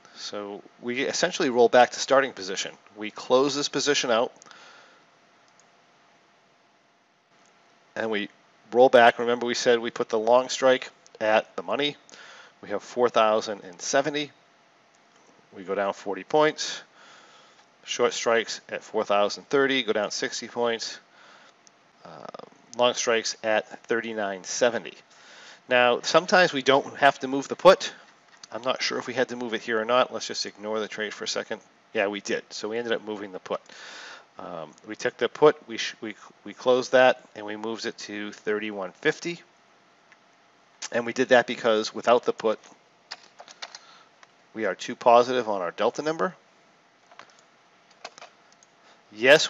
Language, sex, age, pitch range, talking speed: English, male, 40-59, 110-130 Hz, 150 wpm